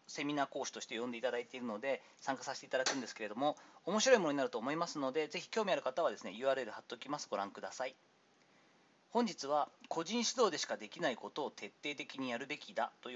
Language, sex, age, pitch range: Japanese, male, 40-59, 140-210 Hz